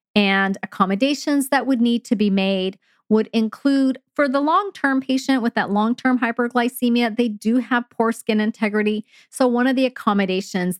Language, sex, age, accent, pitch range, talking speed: English, female, 40-59, American, 195-260 Hz, 160 wpm